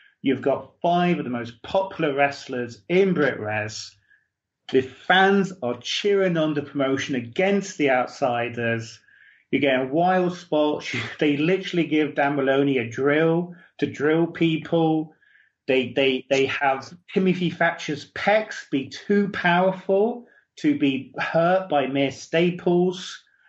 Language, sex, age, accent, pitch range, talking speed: English, male, 30-49, British, 125-170 Hz, 135 wpm